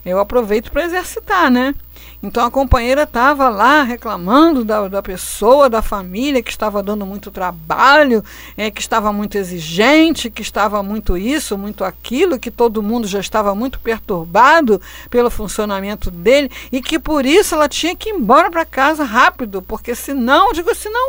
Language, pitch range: Portuguese, 195-285 Hz